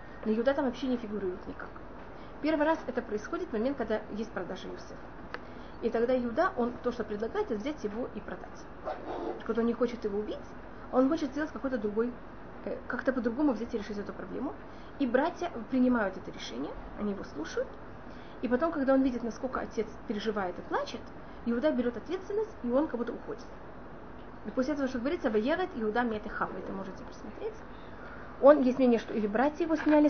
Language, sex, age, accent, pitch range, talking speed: Russian, female, 30-49, native, 225-280 Hz, 180 wpm